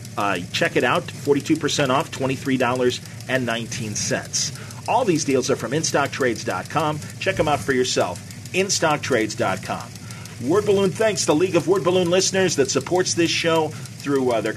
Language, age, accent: English, 40-59, American